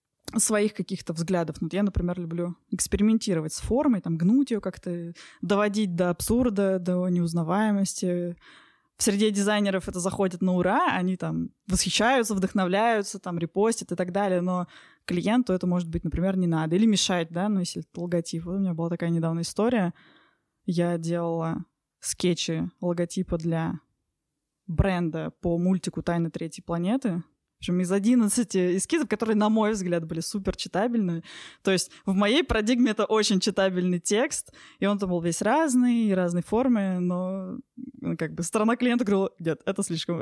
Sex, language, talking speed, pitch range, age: female, Russian, 160 wpm, 175-210 Hz, 20-39